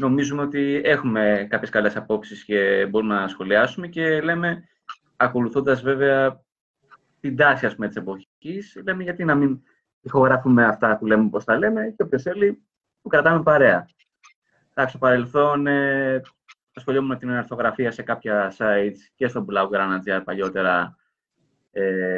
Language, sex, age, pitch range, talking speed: English, male, 20-39, 105-140 Hz, 140 wpm